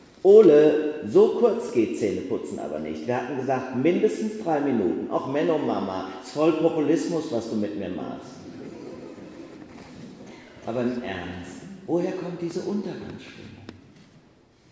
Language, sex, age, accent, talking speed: German, male, 40-59, German, 130 wpm